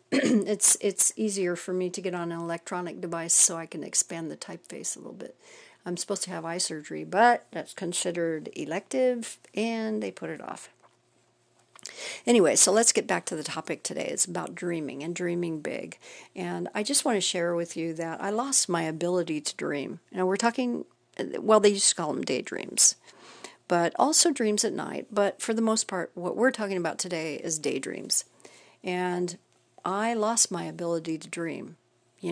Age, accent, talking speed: 50-69, American, 190 wpm